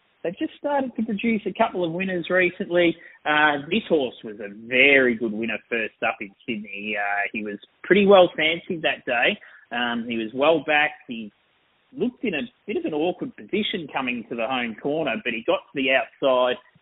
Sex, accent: male, Australian